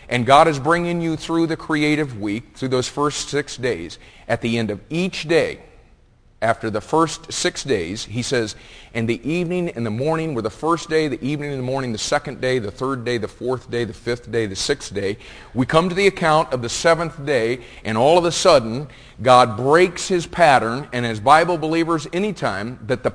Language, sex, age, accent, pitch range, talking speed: English, male, 40-59, American, 115-160 Hz, 215 wpm